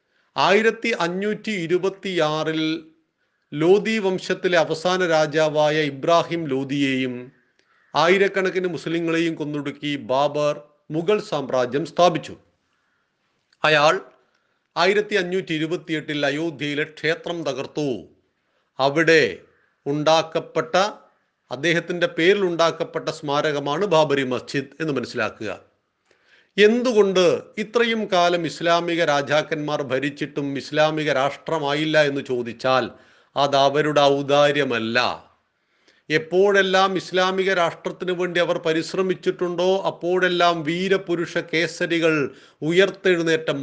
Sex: male